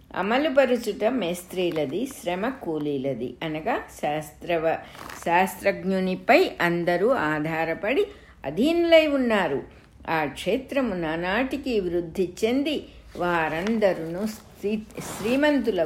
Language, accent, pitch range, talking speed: English, Indian, 165-240 Hz, 70 wpm